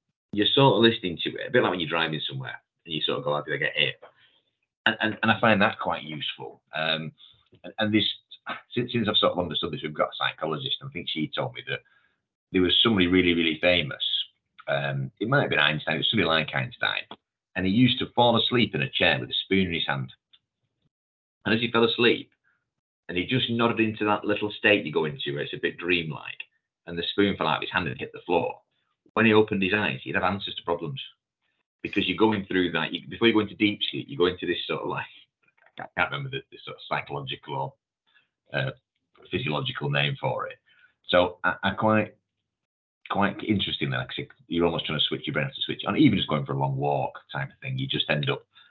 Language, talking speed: English, 240 wpm